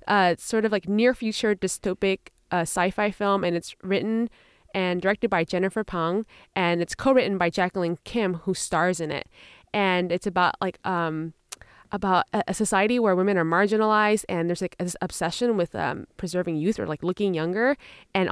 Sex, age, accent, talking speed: female, 20-39, American, 180 wpm